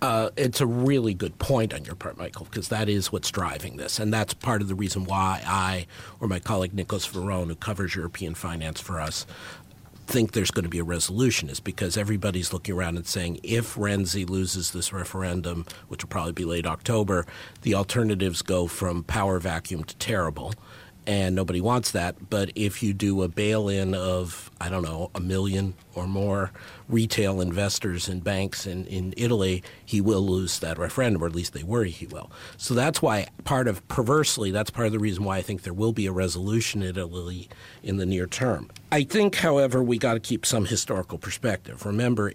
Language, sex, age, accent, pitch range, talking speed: English, male, 50-69, American, 90-110 Hz, 200 wpm